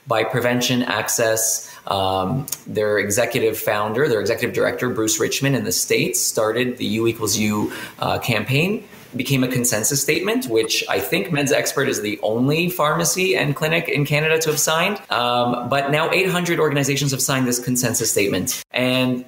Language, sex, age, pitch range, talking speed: English, male, 30-49, 110-140 Hz, 165 wpm